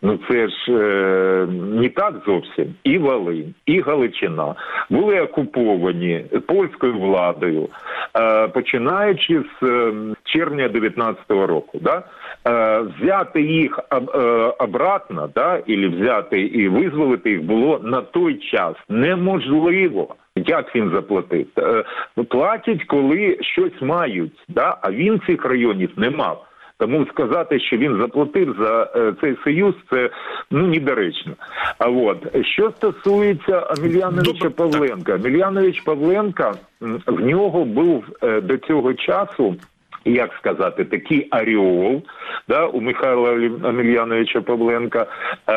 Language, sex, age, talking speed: Ukrainian, male, 40-59, 115 wpm